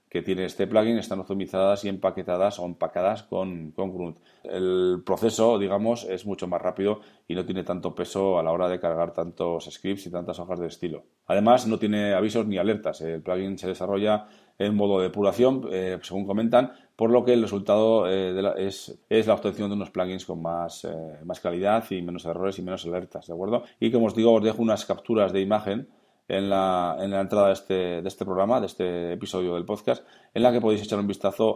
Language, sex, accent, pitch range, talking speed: Spanish, male, Spanish, 90-105 Hz, 210 wpm